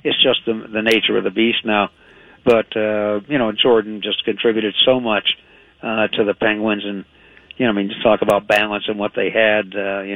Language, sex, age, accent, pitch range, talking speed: English, male, 60-79, American, 100-120 Hz, 220 wpm